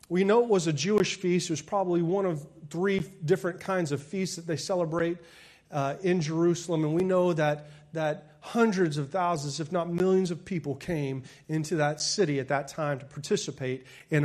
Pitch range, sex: 150-200 Hz, male